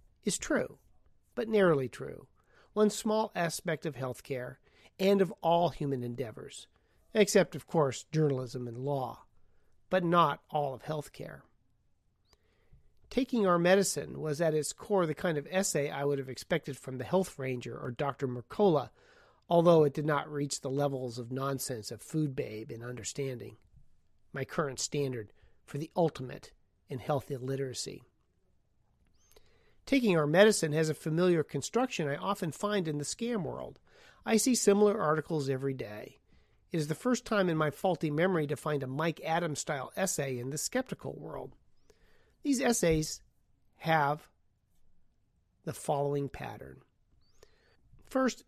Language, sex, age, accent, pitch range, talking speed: English, male, 40-59, American, 135-190 Hz, 145 wpm